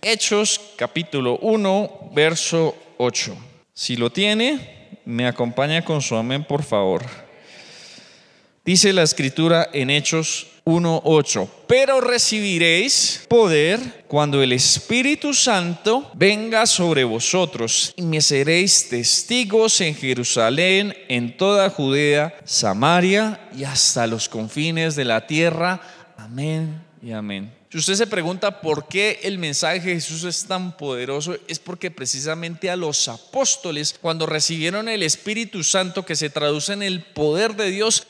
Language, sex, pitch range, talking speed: Spanish, male, 145-195 Hz, 130 wpm